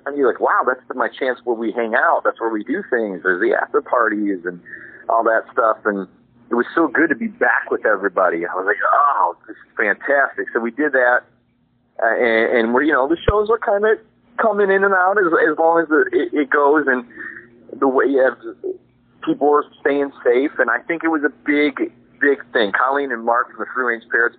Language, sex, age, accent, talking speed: English, male, 30-49, American, 235 wpm